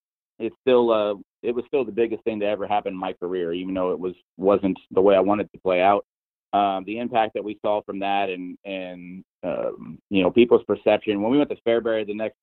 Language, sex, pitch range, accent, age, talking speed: English, male, 95-115 Hz, American, 30-49, 240 wpm